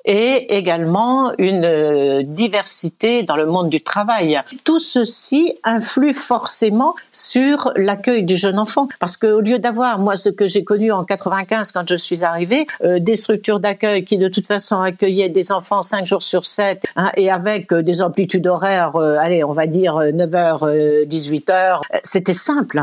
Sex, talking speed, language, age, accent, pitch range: female, 165 wpm, French, 60-79, French, 185-235 Hz